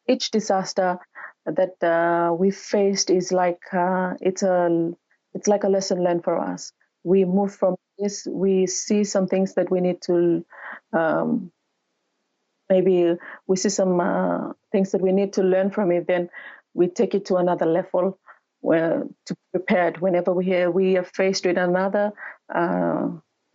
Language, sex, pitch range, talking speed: English, female, 175-195 Hz, 165 wpm